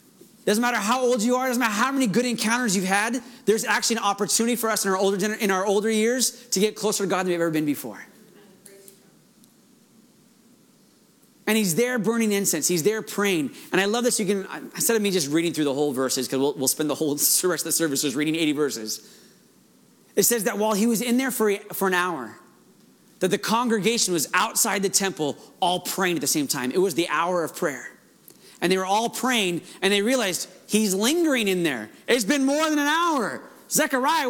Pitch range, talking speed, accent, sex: 190-240 Hz, 215 wpm, American, male